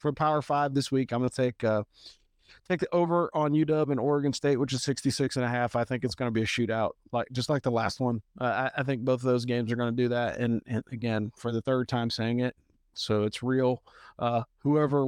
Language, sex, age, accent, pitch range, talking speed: English, male, 40-59, American, 120-140 Hz, 245 wpm